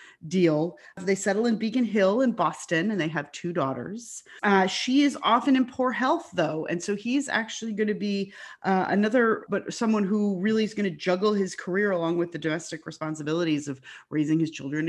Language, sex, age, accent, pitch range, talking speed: English, female, 30-49, American, 155-205 Hz, 200 wpm